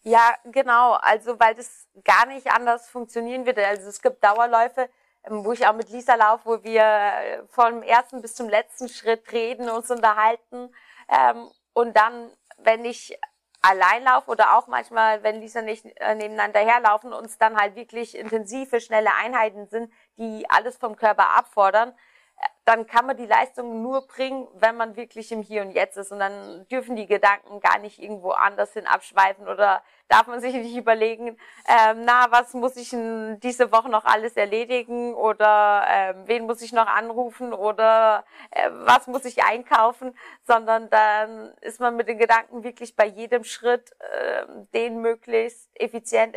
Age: 30-49